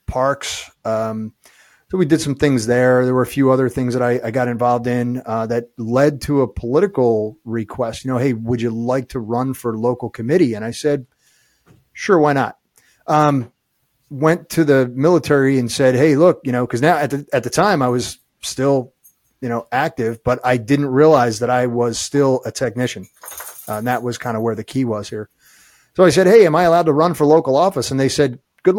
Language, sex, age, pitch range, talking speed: English, male, 30-49, 120-150 Hz, 220 wpm